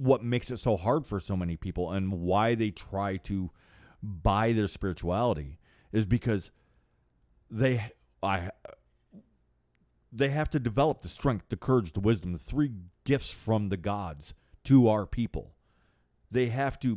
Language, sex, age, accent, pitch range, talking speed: English, male, 40-59, American, 90-125 Hz, 150 wpm